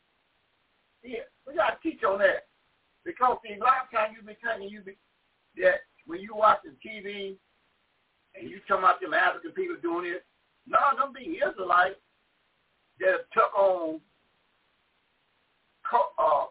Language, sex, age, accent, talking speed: English, male, 60-79, American, 145 wpm